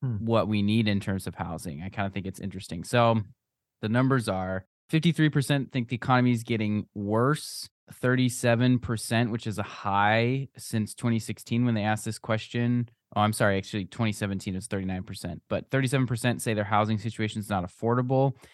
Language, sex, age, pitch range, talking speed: English, male, 20-39, 95-120 Hz, 170 wpm